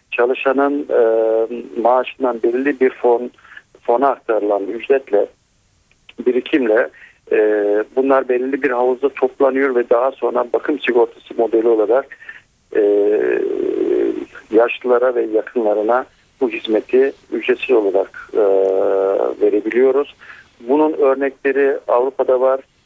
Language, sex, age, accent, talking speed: Turkish, male, 50-69, native, 95 wpm